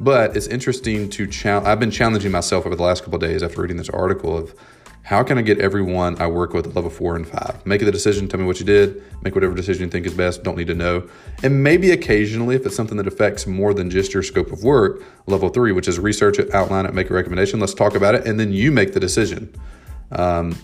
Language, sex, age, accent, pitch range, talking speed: English, male, 30-49, American, 90-105 Hz, 260 wpm